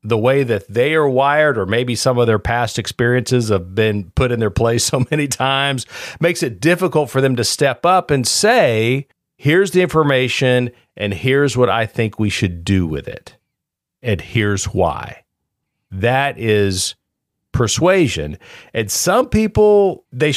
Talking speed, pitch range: 160 wpm, 105-150 Hz